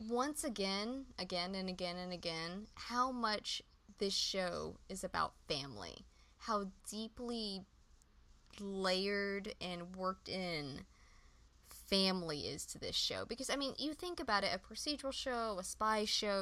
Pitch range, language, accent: 180-240 Hz, English, American